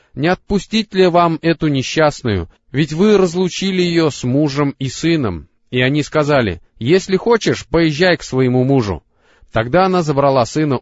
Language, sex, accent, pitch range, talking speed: Russian, male, native, 120-165 Hz, 150 wpm